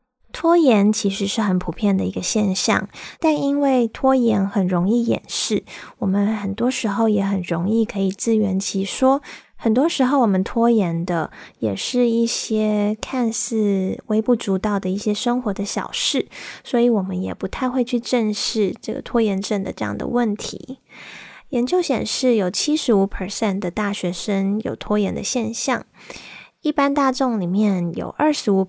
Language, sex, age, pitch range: Chinese, female, 20-39, 200-250 Hz